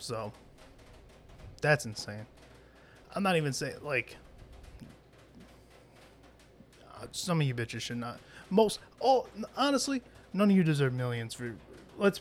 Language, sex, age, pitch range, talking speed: English, male, 20-39, 120-135 Hz, 125 wpm